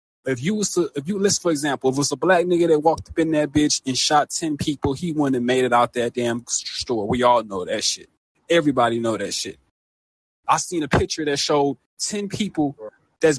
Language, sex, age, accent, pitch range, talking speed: English, male, 20-39, American, 135-165 Hz, 235 wpm